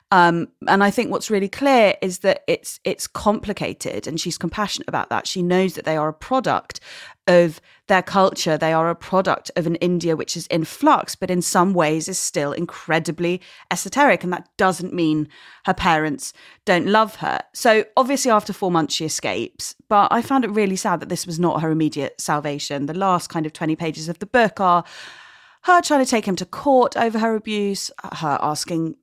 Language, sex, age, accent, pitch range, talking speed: English, female, 30-49, British, 160-205 Hz, 200 wpm